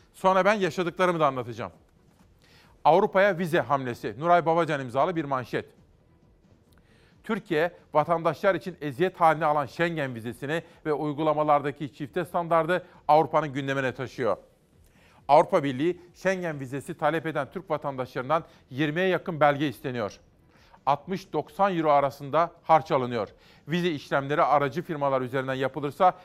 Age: 40-59